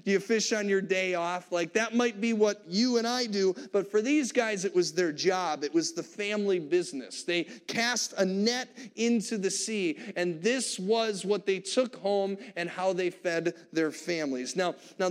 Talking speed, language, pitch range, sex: 205 wpm, English, 180-230 Hz, male